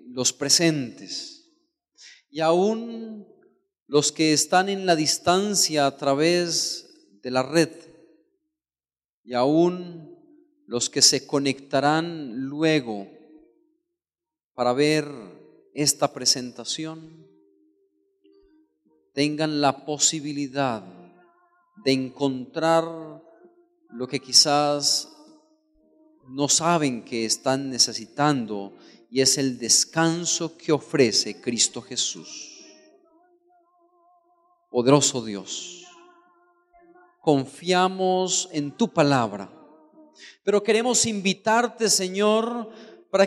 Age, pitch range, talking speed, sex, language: 40-59, 145-225 Hz, 80 wpm, male, Portuguese